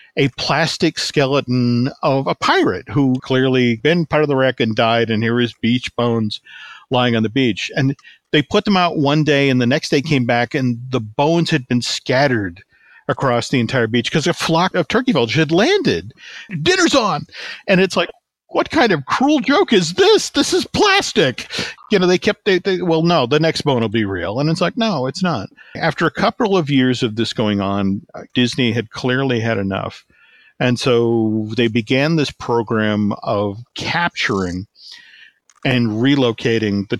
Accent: American